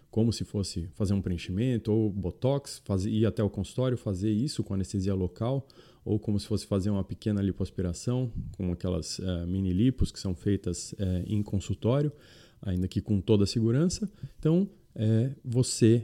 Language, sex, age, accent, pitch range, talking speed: Portuguese, male, 20-39, Brazilian, 95-110 Hz, 150 wpm